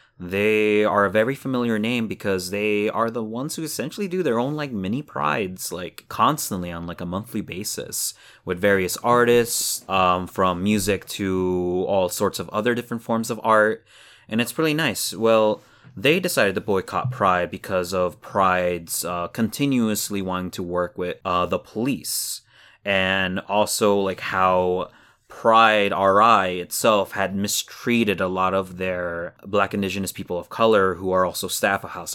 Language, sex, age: English, male, 20-39